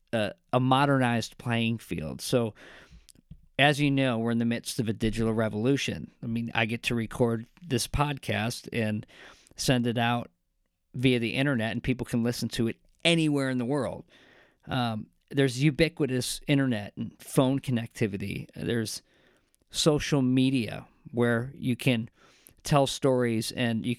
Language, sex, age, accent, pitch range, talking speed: English, male, 40-59, American, 115-140 Hz, 150 wpm